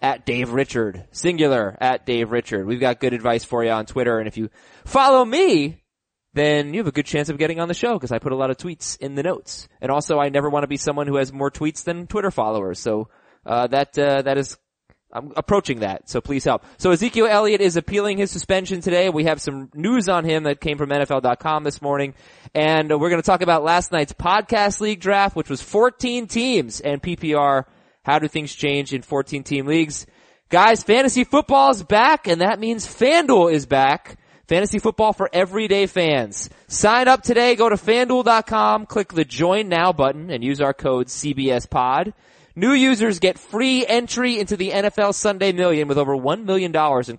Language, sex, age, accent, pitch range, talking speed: English, male, 20-39, American, 135-195 Hz, 200 wpm